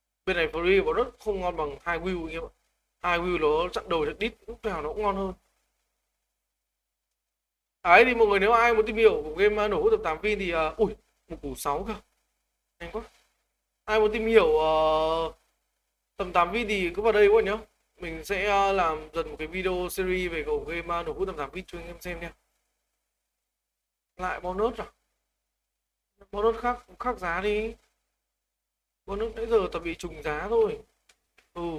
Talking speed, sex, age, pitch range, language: 200 wpm, male, 20-39, 160-220 Hz, Vietnamese